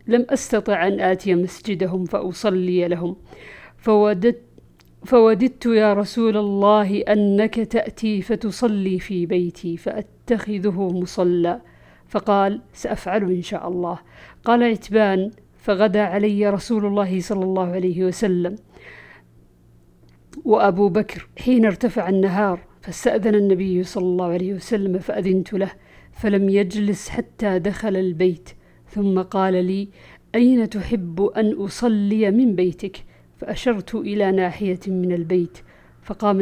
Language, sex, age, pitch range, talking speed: Arabic, female, 50-69, 180-215 Hz, 110 wpm